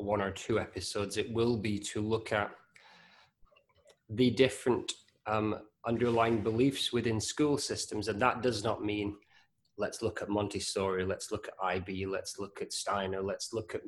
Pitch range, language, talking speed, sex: 100-115 Hz, English, 165 wpm, male